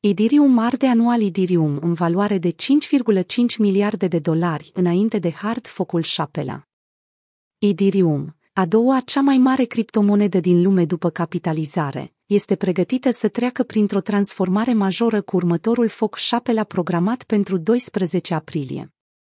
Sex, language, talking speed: female, Romanian, 130 wpm